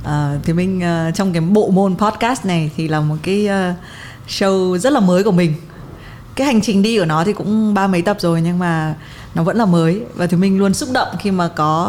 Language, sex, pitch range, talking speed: Vietnamese, female, 155-195 Hz, 240 wpm